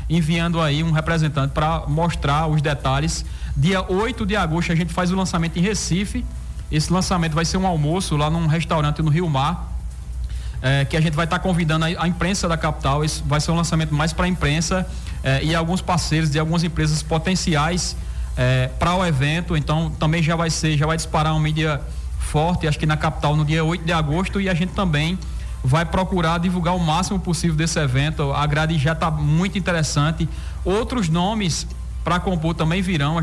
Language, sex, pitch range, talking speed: Portuguese, male, 150-180 Hz, 200 wpm